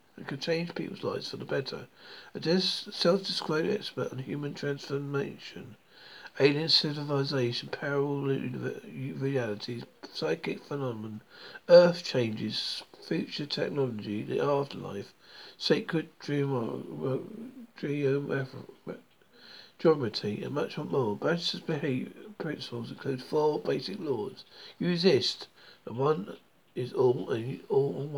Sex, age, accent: male, 60-79, British